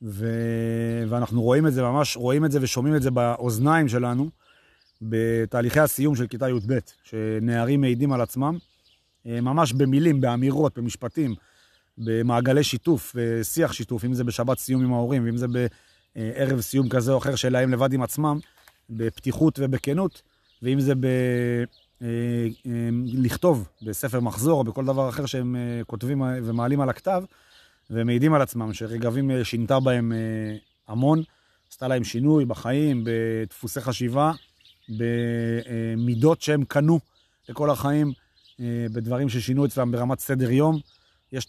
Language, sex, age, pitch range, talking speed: Hebrew, male, 30-49, 115-140 Hz, 130 wpm